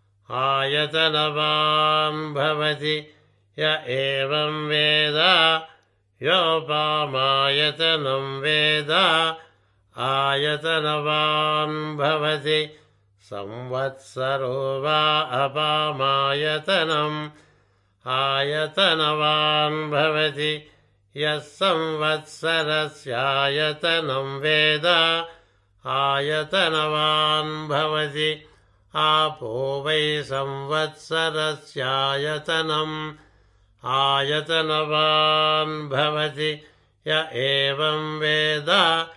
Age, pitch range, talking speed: 60-79, 135-155 Hz, 30 wpm